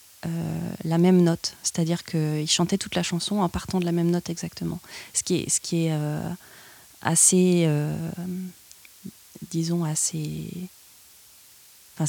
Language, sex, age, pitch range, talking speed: French, female, 30-49, 160-185 Hz, 155 wpm